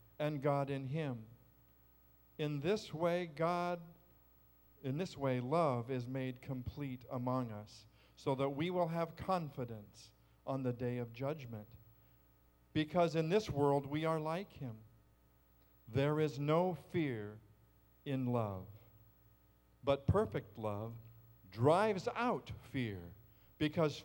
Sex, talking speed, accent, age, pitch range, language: male, 120 wpm, American, 50-69, 110-160 Hz, English